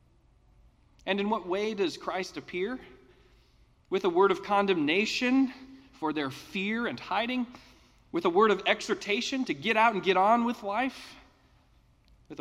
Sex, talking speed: male, 150 wpm